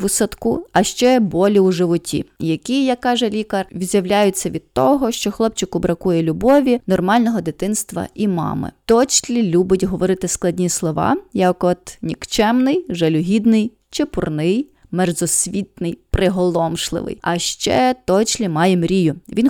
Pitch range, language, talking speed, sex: 175-220 Hz, Ukrainian, 125 wpm, female